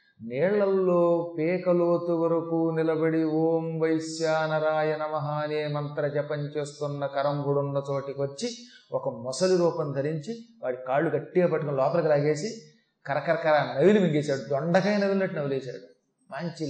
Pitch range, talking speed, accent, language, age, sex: 160-215 Hz, 110 wpm, native, Telugu, 30-49, male